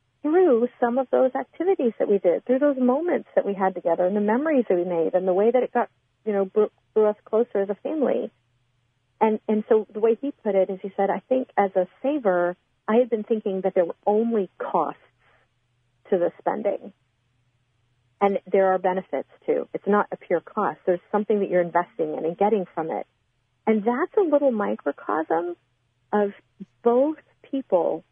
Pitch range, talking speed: 170-225 Hz, 195 wpm